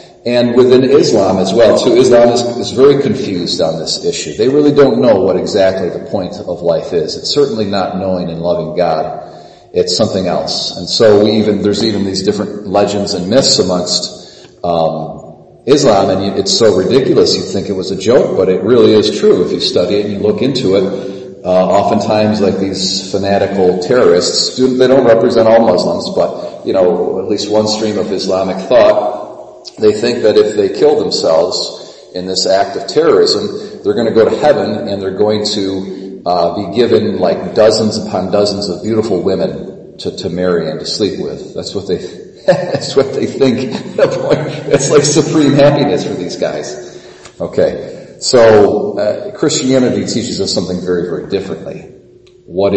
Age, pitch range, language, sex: 40-59, 95-140 Hz, English, male